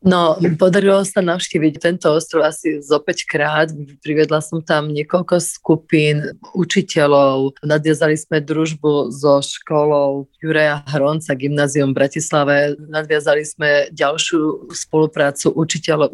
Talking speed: 110 wpm